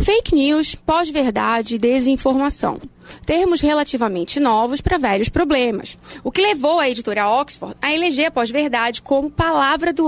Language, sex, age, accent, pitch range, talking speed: Portuguese, female, 20-39, Brazilian, 250-335 Hz, 145 wpm